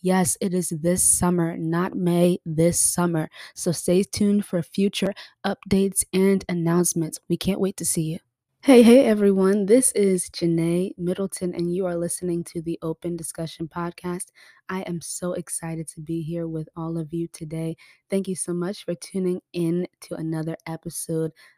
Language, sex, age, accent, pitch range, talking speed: English, female, 20-39, American, 165-185 Hz, 170 wpm